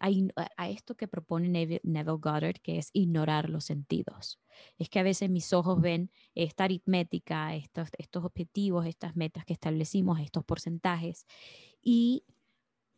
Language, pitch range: Spanish, 165-200 Hz